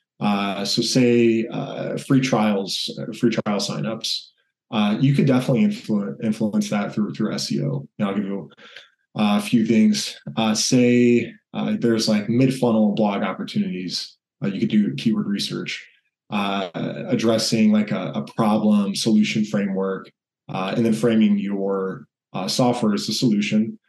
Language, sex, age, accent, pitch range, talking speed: English, male, 20-39, American, 105-130 Hz, 150 wpm